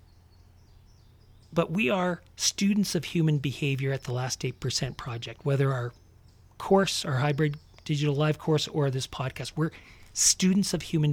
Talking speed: 145 wpm